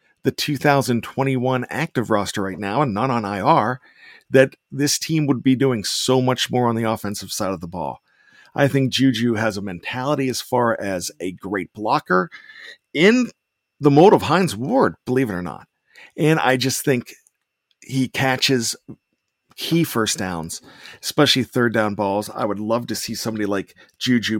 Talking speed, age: 170 wpm, 50-69